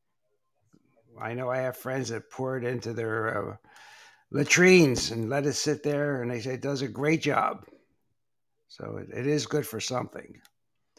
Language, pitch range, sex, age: English, 130-155 Hz, male, 60-79